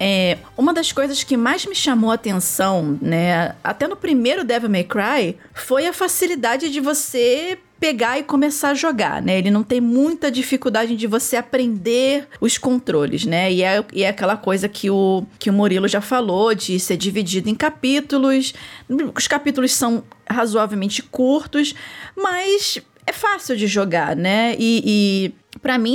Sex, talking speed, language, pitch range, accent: female, 160 wpm, Portuguese, 195-265 Hz, Brazilian